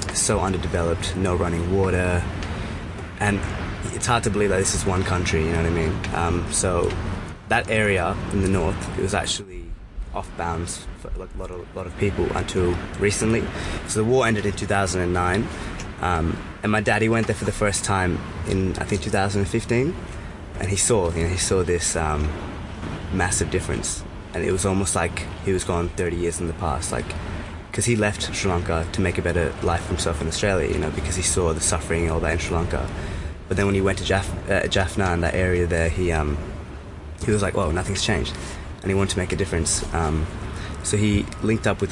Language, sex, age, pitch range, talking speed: English, male, 20-39, 85-100 Hz, 210 wpm